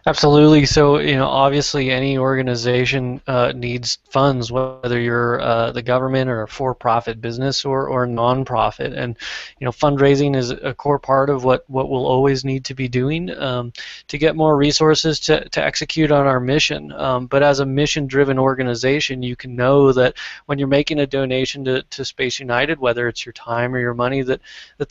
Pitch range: 120-140 Hz